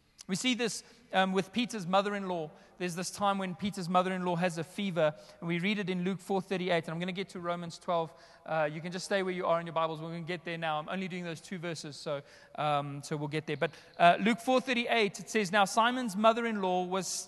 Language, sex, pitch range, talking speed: English, male, 185-235 Hz, 235 wpm